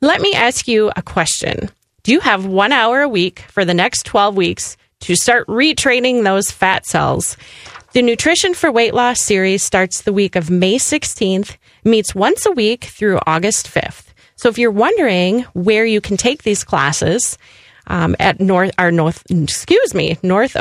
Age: 30-49